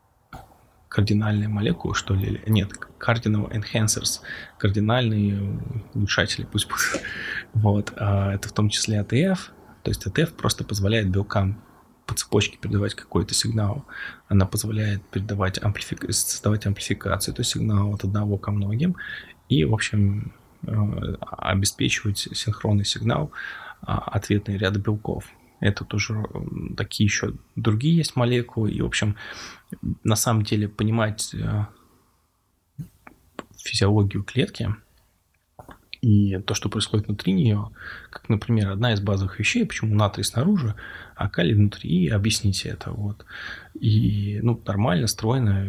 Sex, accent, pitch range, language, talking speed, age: male, native, 100-110 Hz, Russian, 120 wpm, 20-39